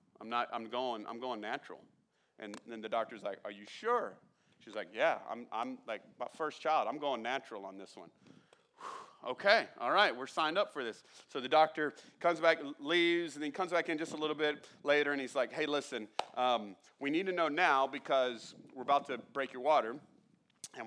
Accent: American